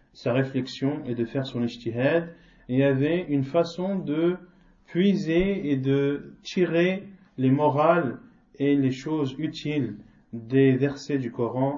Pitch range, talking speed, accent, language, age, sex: 125-165 Hz, 130 wpm, French, French, 40-59, male